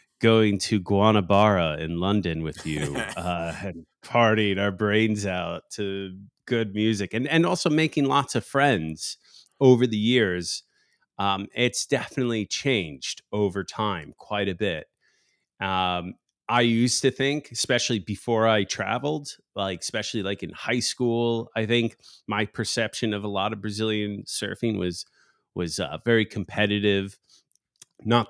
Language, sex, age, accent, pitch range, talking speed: English, male, 30-49, American, 95-120 Hz, 140 wpm